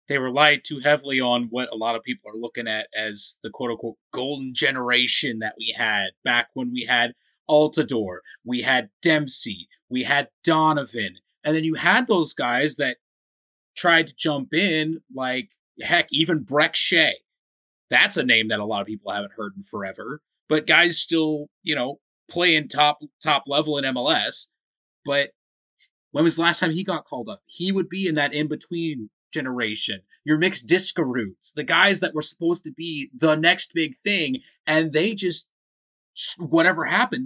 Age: 30-49